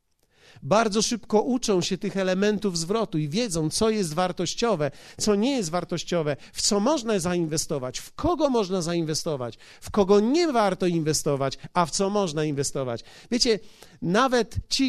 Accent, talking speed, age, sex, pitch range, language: native, 150 wpm, 40-59, male, 170-215 Hz, Polish